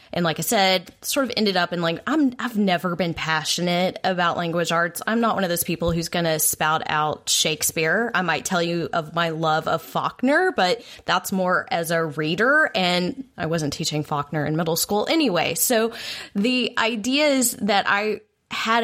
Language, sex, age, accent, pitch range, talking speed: English, female, 20-39, American, 170-225 Hz, 190 wpm